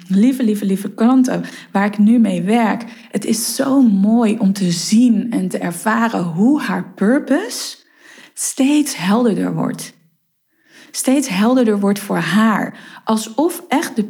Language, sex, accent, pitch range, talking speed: Dutch, female, Dutch, 190-245 Hz, 140 wpm